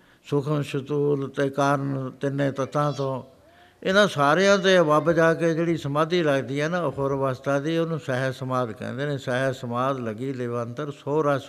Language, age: Punjabi, 60-79